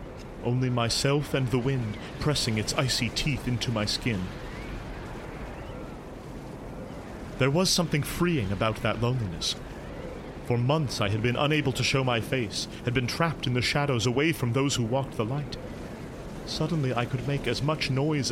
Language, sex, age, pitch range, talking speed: English, male, 30-49, 110-135 Hz, 160 wpm